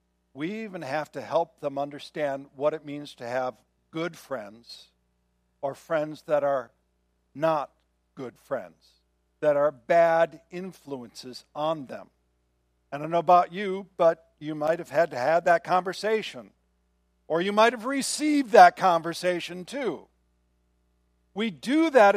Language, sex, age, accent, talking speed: English, male, 60-79, American, 145 wpm